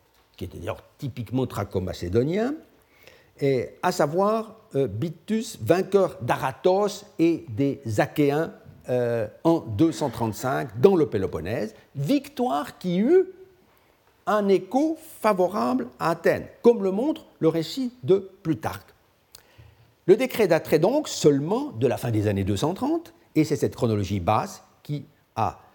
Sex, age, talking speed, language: male, 60-79, 125 wpm, French